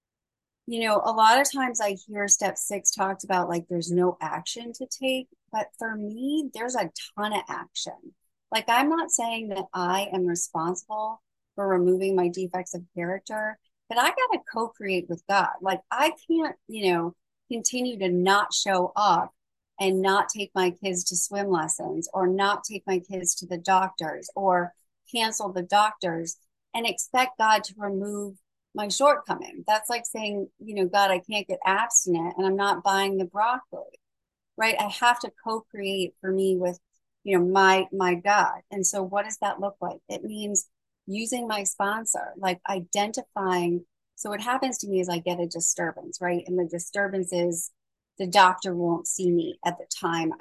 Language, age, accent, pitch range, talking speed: English, 30-49, American, 180-220 Hz, 180 wpm